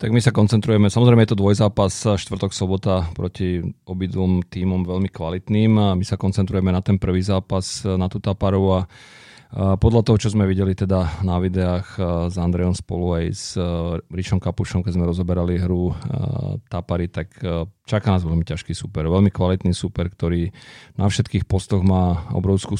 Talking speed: 160 wpm